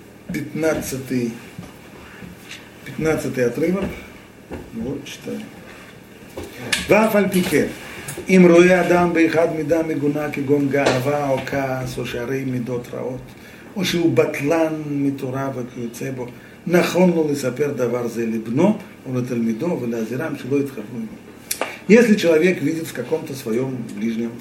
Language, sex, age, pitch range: Russian, male, 50-69, 120-160 Hz